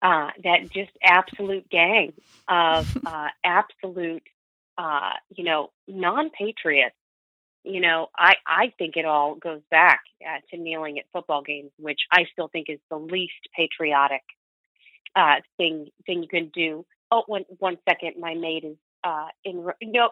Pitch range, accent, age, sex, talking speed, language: 170-245 Hz, American, 30-49, female, 155 wpm, English